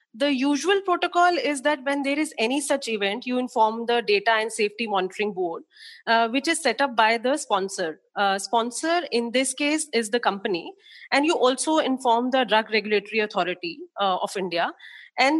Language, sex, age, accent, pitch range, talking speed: English, female, 30-49, Indian, 215-275 Hz, 185 wpm